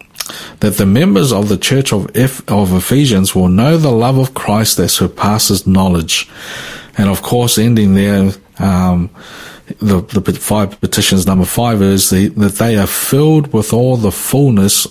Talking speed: 170 wpm